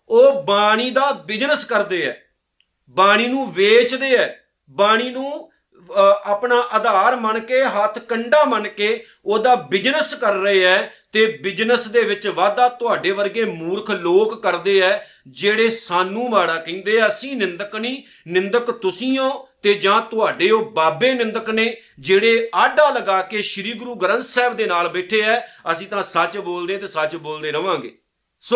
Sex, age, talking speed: male, 50-69, 115 wpm